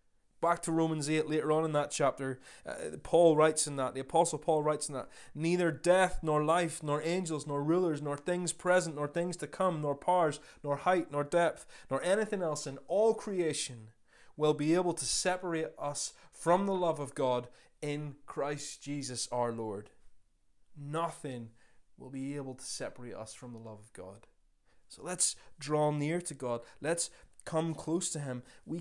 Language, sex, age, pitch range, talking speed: English, male, 20-39, 130-165 Hz, 180 wpm